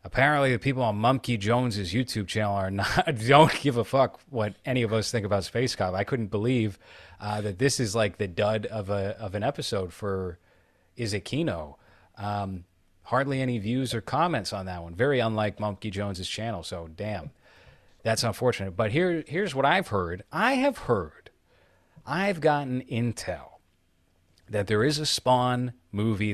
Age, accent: 30-49, American